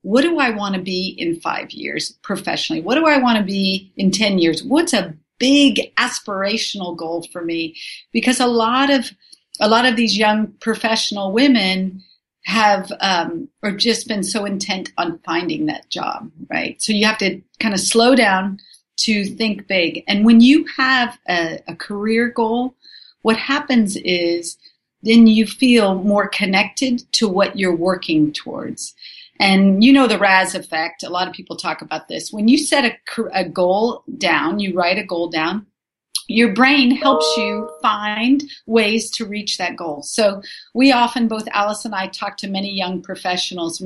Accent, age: American, 50-69